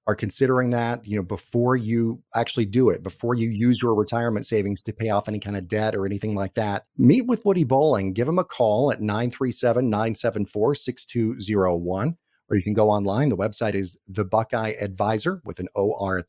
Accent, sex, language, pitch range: American, male, English, 105-130 Hz